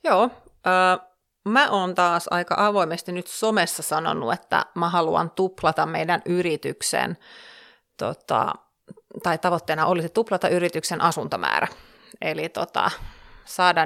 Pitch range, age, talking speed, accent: 165-210 Hz, 30-49, 115 wpm, native